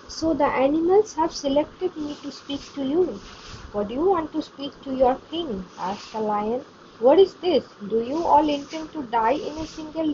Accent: Indian